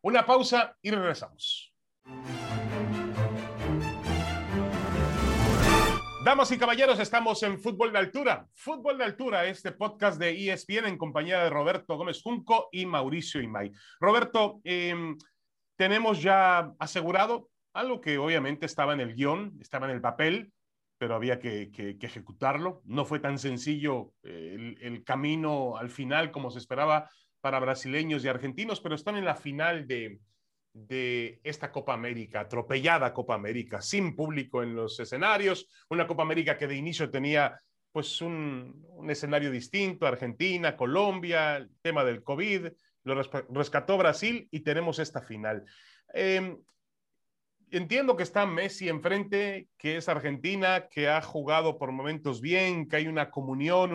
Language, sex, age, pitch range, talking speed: Spanish, male, 40-59, 130-185 Hz, 145 wpm